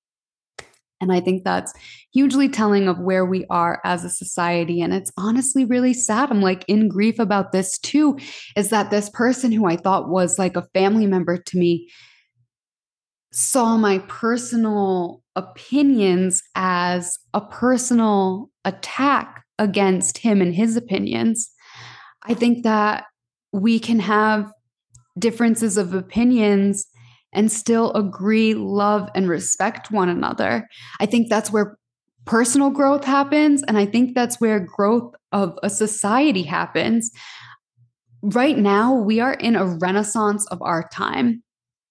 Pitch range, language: 185-230 Hz, English